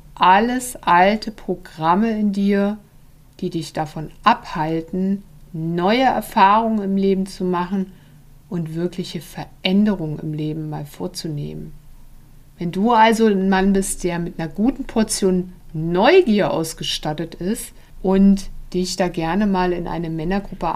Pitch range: 160-200 Hz